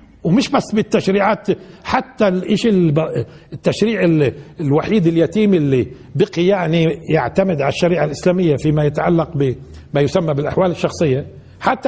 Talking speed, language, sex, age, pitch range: 115 wpm, Arabic, male, 60-79, 160-215 Hz